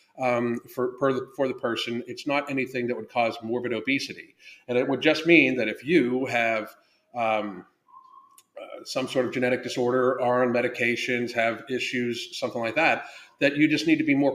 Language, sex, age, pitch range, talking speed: English, male, 40-59, 120-155 Hz, 185 wpm